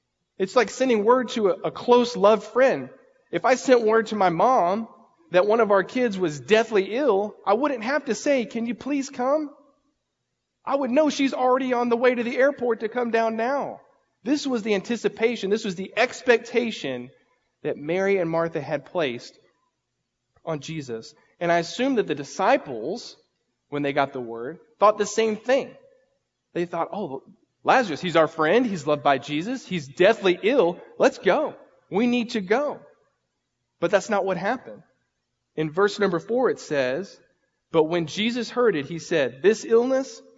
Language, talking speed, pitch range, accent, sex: English, 175 wpm, 160-240 Hz, American, male